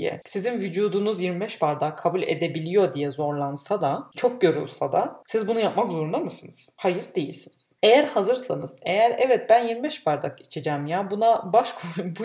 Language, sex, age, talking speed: Turkish, female, 30-49, 155 wpm